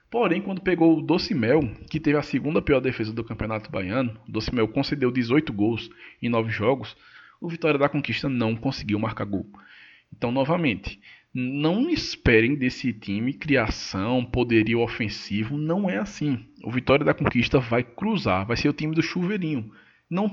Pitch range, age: 115-155 Hz, 20-39